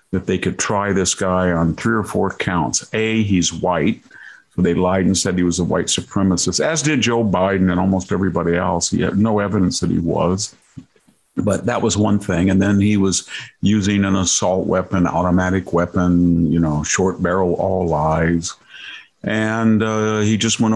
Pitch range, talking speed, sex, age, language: 90-115 Hz, 190 wpm, male, 50-69, English